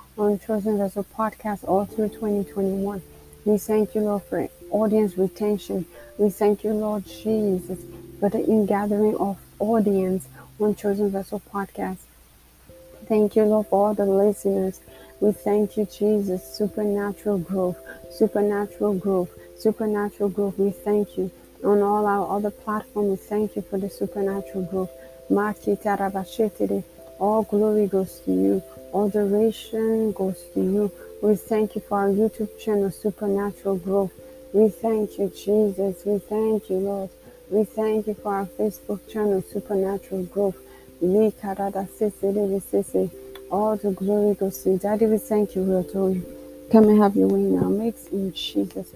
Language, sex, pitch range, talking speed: English, female, 185-210 Hz, 145 wpm